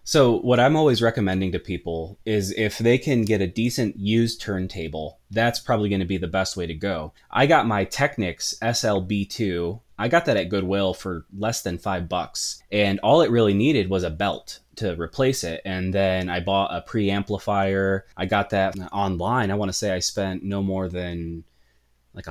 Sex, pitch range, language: male, 95-110 Hz, English